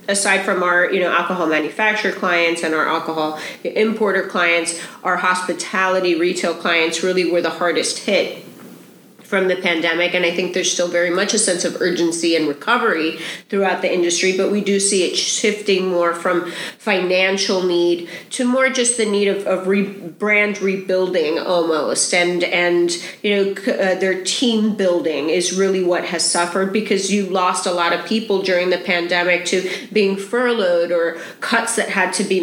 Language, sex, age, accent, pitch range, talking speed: English, female, 30-49, American, 180-205 Hz, 170 wpm